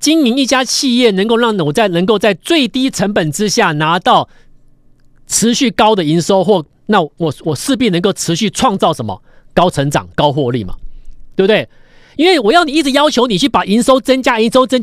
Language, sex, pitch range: Chinese, male, 145-230 Hz